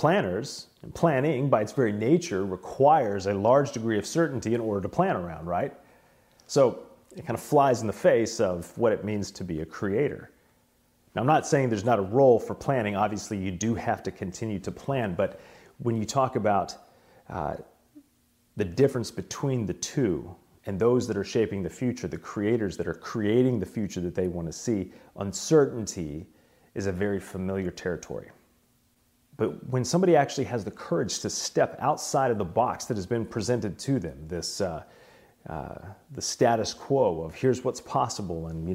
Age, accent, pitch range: 30-49, American, 95-125 Hz